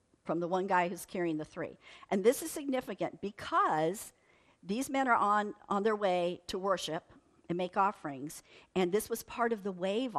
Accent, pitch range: American, 170-210 Hz